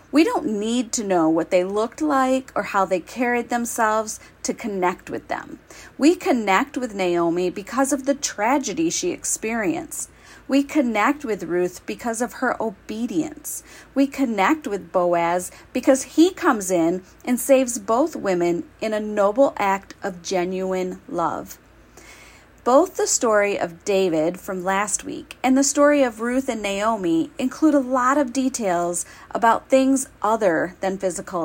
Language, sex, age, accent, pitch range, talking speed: English, female, 40-59, American, 195-285 Hz, 155 wpm